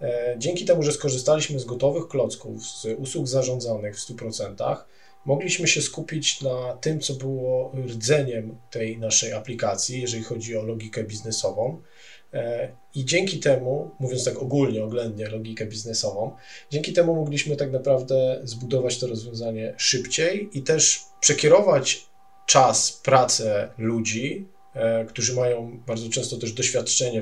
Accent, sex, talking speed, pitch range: native, male, 130 wpm, 115-150 Hz